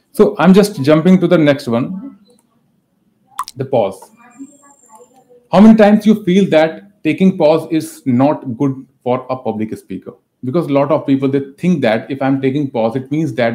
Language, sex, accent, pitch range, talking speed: Hindi, male, native, 125-160 Hz, 175 wpm